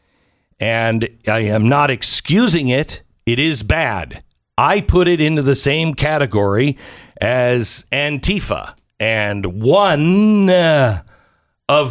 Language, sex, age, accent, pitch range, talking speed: English, male, 50-69, American, 100-155 Hz, 105 wpm